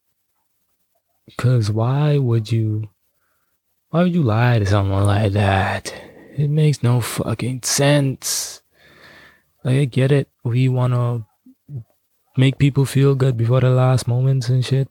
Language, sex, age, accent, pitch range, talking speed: English, male, 20-39, American, 105-130 Hz, 135 wpm